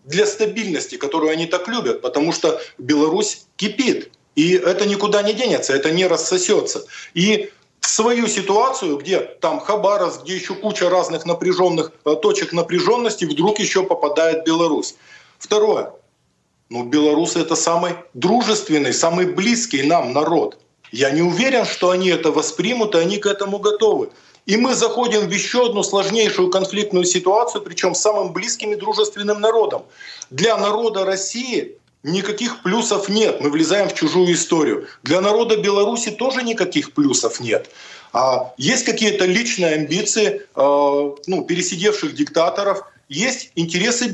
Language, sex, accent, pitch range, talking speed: Russian, male, native, 170-225 Hz, 135 wpm